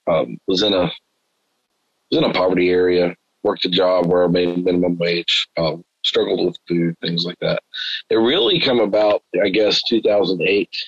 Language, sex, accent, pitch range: English, male, American, 90-105 Hz